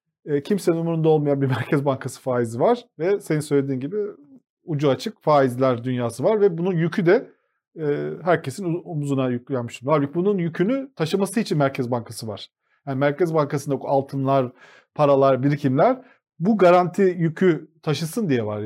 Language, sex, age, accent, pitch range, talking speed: Turkish, male, 40-59, native, 135-195 Hz, 150 wpm